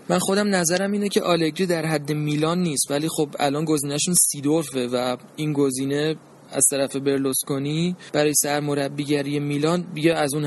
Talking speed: 160 wpm